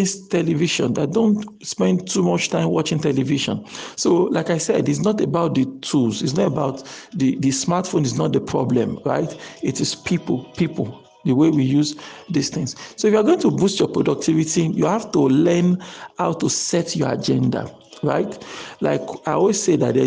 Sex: male